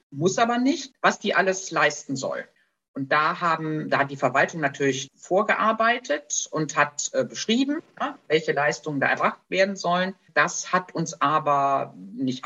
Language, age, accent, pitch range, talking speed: German, 50-69, German, 140-180 Hz, 160 wpm